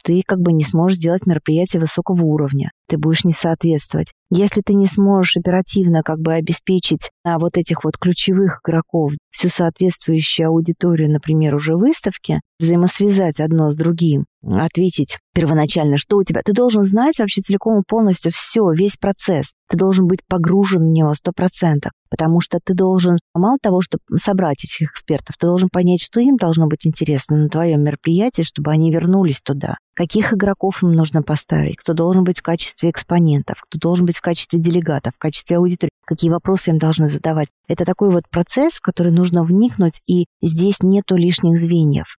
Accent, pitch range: native, 160-185 Hz